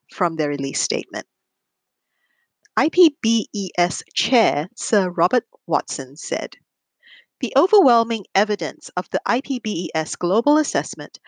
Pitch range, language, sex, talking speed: 180-285 Hz, English, female, 95 wpm